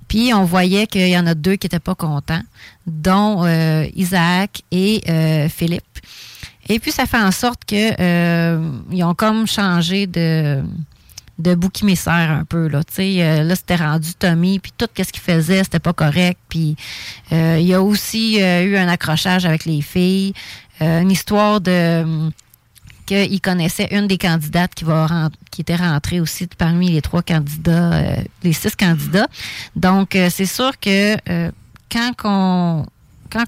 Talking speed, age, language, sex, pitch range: 170 wpm, 30-49, English, female, 165-195 Hz